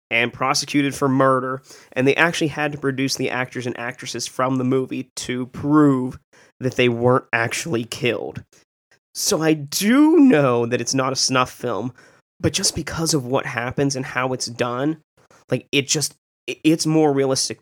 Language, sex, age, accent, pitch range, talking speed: English, male, 20-39, American, 120-140 Hz, 170 wpm